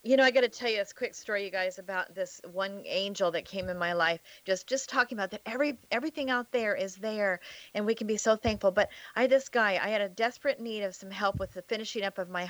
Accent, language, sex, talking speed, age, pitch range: American, English, female, 270 wpm, 40-59, 200-265 Hz